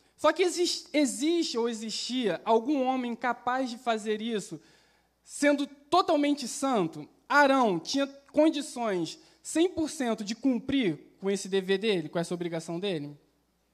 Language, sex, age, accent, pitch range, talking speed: Portuguese, male, 20-39, Brazilian, 175-235 Hz, 125 wpm